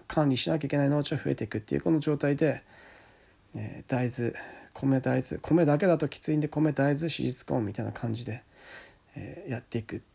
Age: 40-59